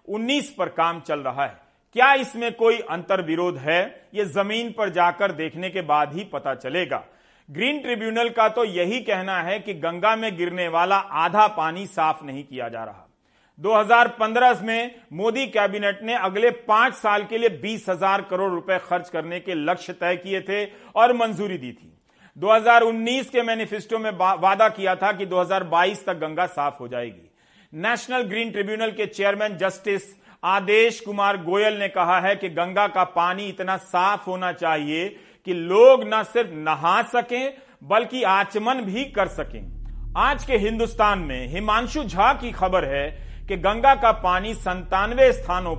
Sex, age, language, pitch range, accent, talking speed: male, 40-59, Hindi, 180-225 Hz, native, 165 wpm